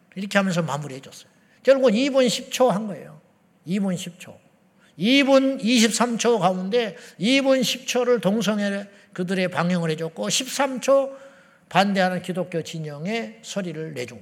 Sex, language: male, Korean